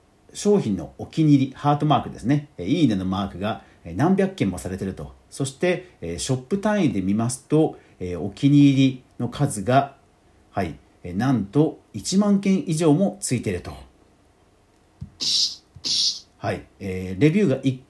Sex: male